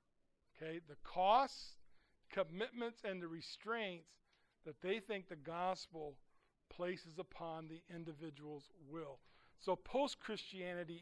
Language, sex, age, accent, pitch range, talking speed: English, male, 50-69, American, 165-220 Hz, 100 wpm